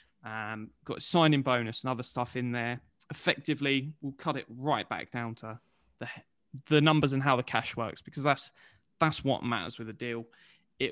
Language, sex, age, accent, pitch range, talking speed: English, male, 20-39, British, 125-155 Hz, 190 wpm